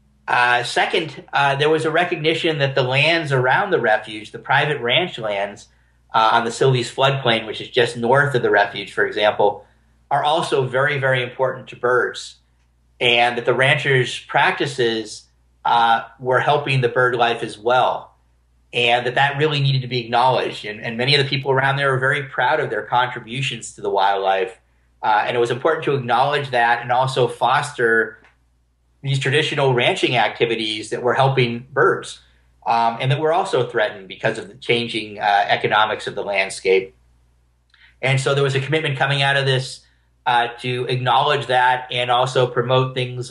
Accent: American